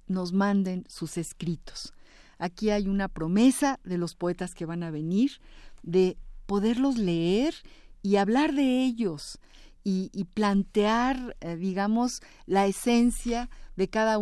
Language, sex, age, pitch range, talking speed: Spanish, female, 50-69, 170-220 Hz, 130 wpm